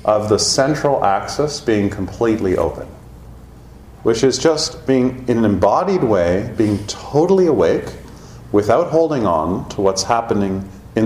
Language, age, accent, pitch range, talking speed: English, 40-59, American, 100-135 Hz, 135 wpm